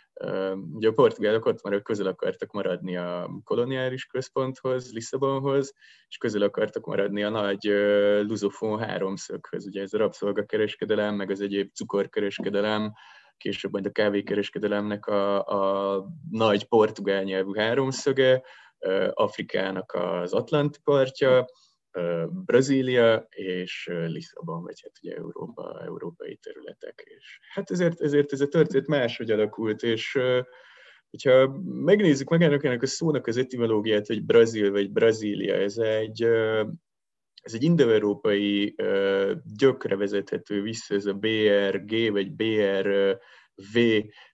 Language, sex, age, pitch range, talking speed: Hungarian, male, 20-39, 100-130 Hz, 115 wpm